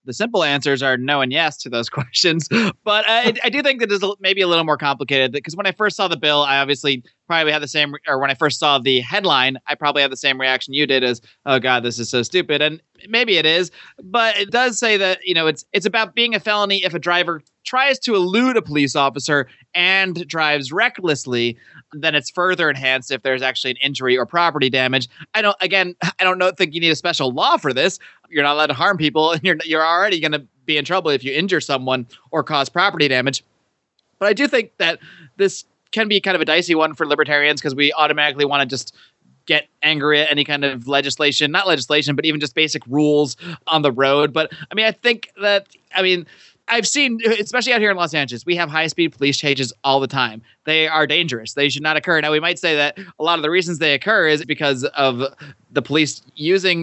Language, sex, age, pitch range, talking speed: English, male, 30-49, 140-180 Hz, 235 wpm